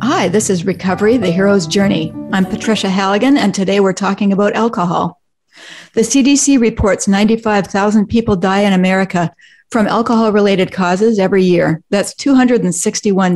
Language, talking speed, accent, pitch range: English, 140 wpm, American, 175-210 Hz